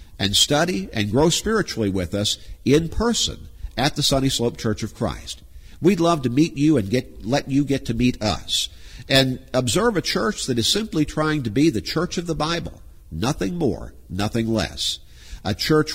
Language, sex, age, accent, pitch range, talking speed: English, male, 50-69, American, 95-150 Hz, 190 wpm